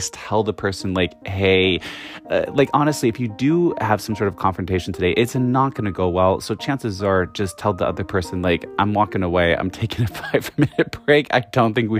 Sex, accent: male, American